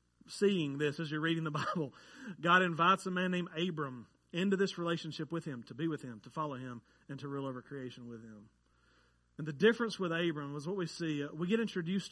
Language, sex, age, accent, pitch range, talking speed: English, male, 40-59, American, 145-185 Hz, 220 wpm